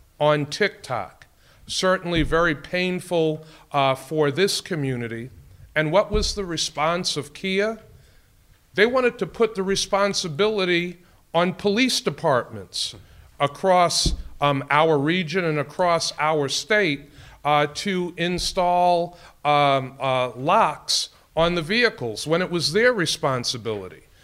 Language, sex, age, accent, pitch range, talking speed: English, male, 40-59, American, 135-180 Hz, 115 wpm